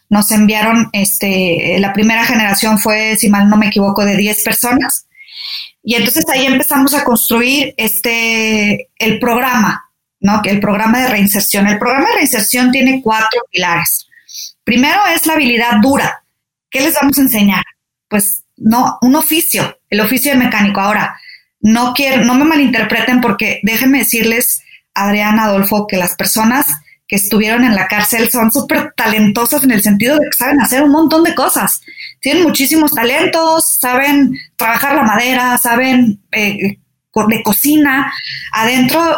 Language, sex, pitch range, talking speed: Spanish, female, 210-265 Hz, 150 wpm